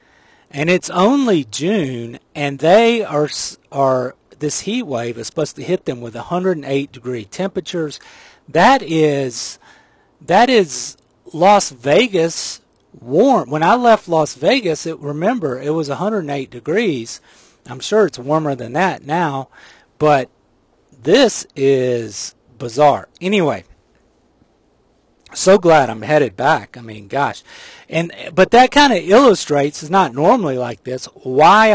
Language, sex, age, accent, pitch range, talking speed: English, male, 40-59, American, 135-185 Hz, 130 wpm